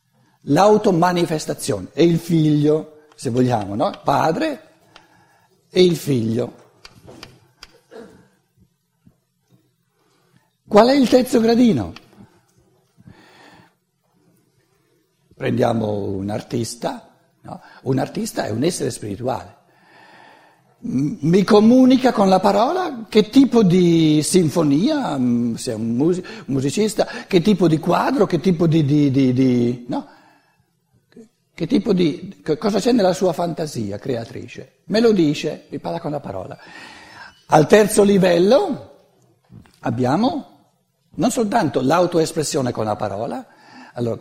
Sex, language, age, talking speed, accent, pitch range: male, Italian, 60-79, 105 wpm, native, 135-205 Hz